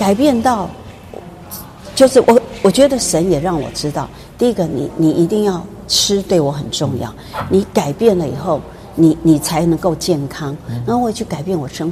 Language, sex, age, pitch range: Chinese, female, 50-69, 150-220 Hz